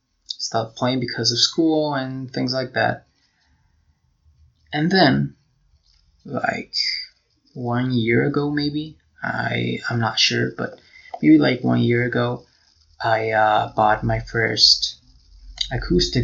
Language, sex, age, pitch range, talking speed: English, male, 20-39, 75-125 Hz, 120 wpm